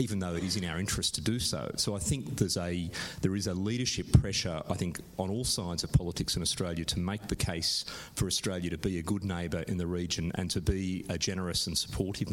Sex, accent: male, Australian